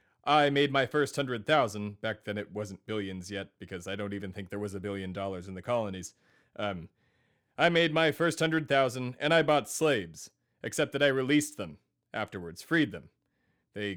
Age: 30-49